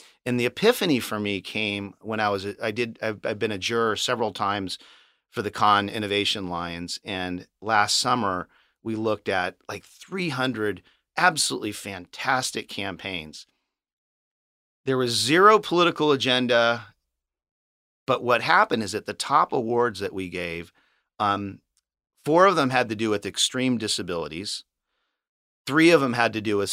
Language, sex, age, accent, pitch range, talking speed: English, male, 40-59, American, 100-130 Hz, 150 wpm